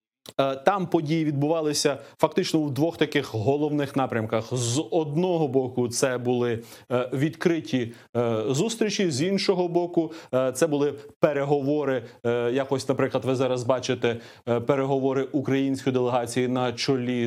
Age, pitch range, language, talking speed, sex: 30-49, 130-160 Hz, Ukrainian, 110 wpm, male